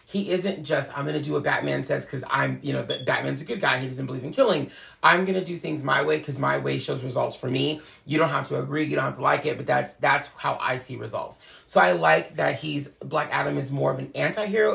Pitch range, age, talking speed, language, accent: 135-190 Hz, 30-49, 275 wpm, English, American